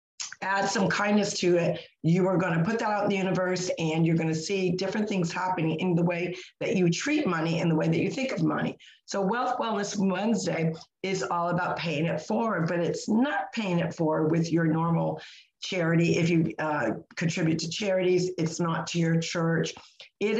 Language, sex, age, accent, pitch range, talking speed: English, female, 50-69, American, 165-190 Hz, 205 wpm